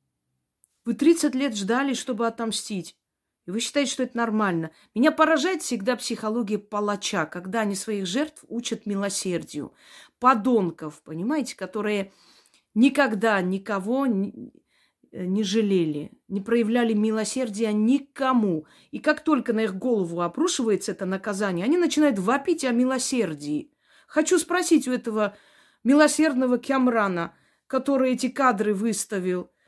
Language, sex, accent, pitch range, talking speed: Russian, female, native, 200-265 Hz, 115 wpm